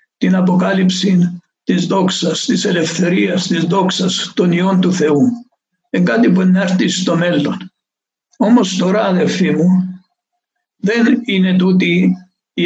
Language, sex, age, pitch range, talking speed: Greek, male, 60-79, 175-195 Hz, 125 wpm